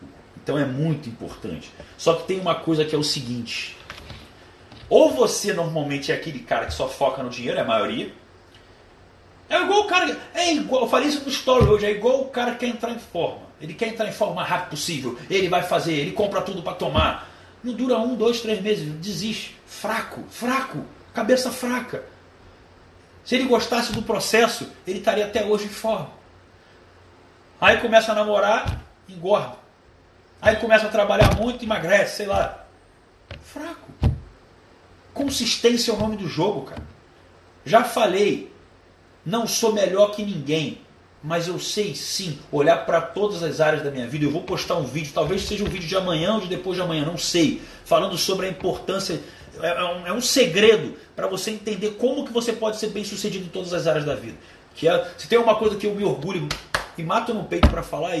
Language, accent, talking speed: Portuguese, Brazilian, 190 wpm